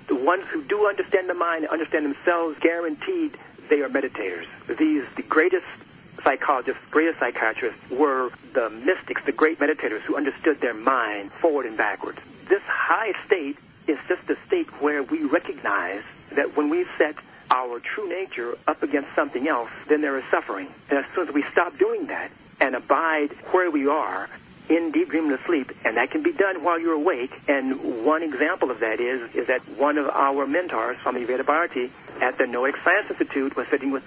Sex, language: male, English